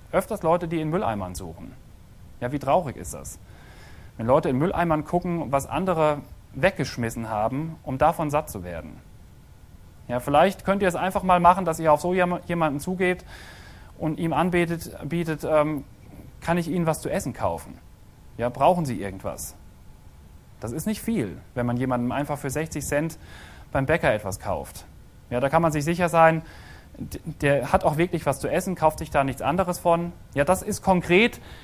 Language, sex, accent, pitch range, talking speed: German, male, German, 130-180 Hz, 175 wpm